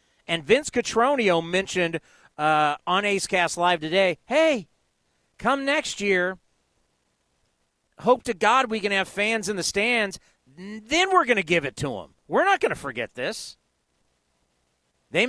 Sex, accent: male, American